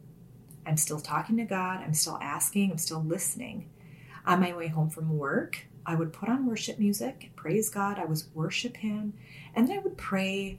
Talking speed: 195 wpm